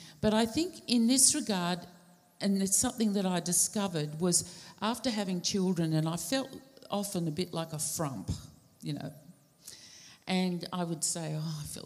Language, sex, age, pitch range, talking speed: English, female, 50-69, 160-205 Hz, 170 wpm